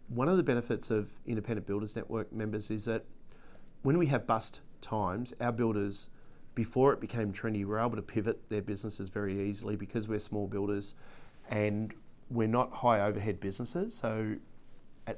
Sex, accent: male, Australian